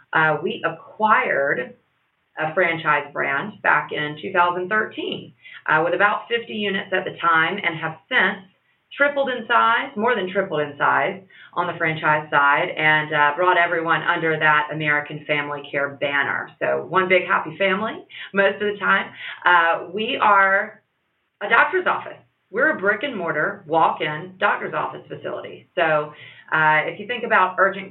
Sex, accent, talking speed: female, American, 155 wpm